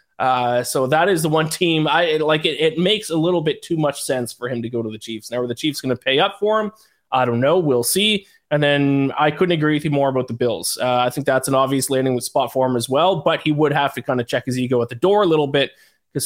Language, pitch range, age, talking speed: English, 130-160 Hz, 20-39, 300 wpm